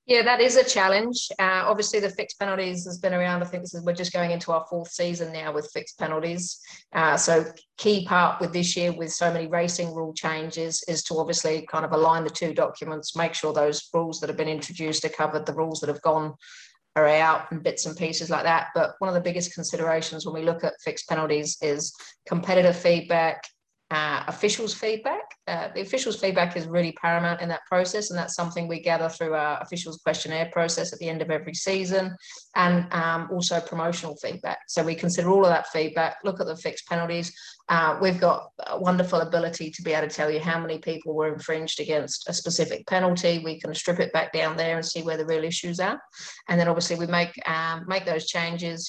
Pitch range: 160-175 Hz